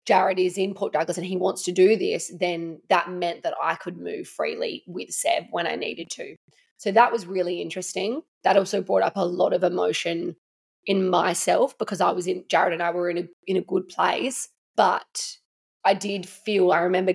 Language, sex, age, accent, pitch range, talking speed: English, female, 20-39, Australian, 175-200 Hz, 210 wpm